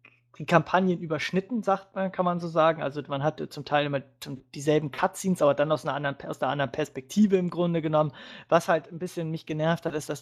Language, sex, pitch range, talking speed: English, male, 145-175 Hz, 225 wpm